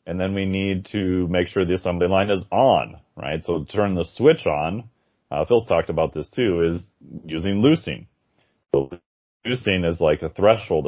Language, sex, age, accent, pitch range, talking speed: English, male, 30-49, American, 80-95 Hz, 180 wpm